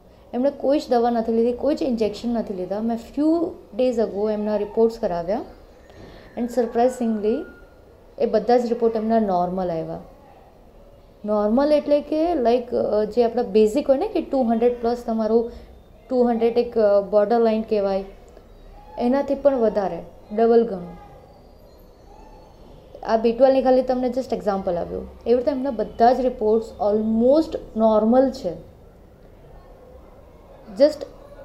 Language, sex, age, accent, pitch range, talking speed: Gujarati, female, 20-39, native, 215-275 Hz, 130 wpm